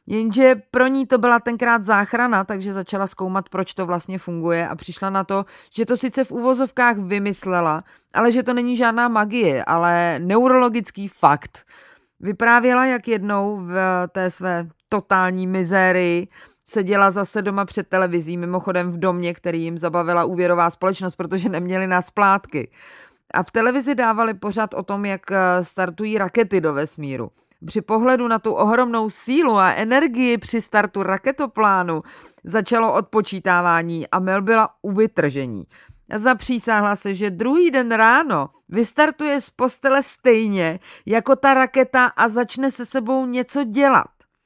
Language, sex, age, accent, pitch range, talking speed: Czech, female, 30-49, native, 180-235 Hz, 145 wpm